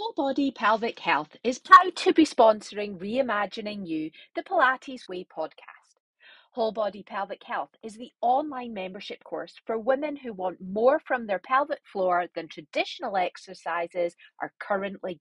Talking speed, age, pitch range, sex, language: 150 wpm, 40-59, 195-310 Hz, female, English